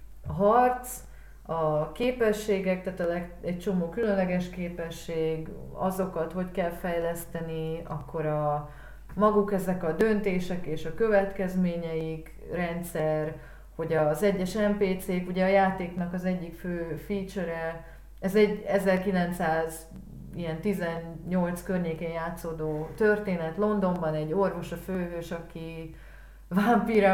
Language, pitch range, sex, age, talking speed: Hungarian, 160-195 Hz, female, 30-49, 110 wpm